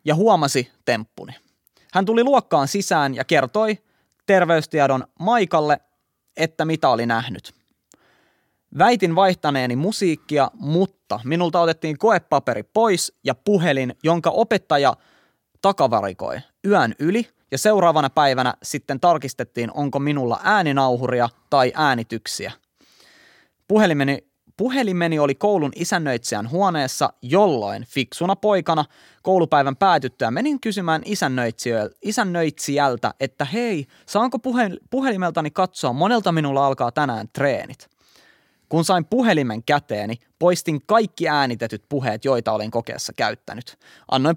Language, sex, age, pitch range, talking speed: Finnish, male, 20-39, 135-195 Hz, 105 wpm